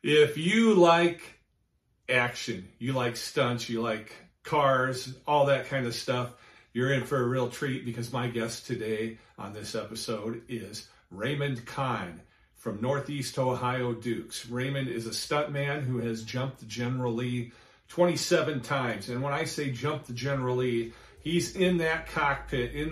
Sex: male